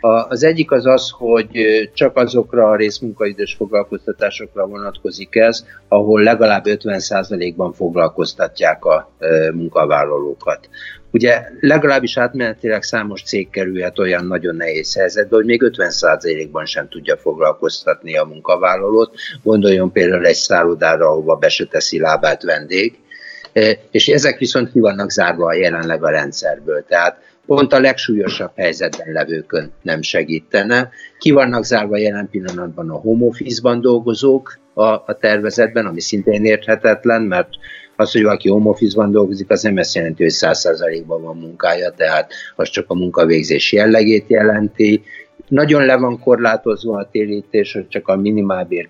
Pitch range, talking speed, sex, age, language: 100-130 Hz, 135 wpm, male, 60-79, Hungarian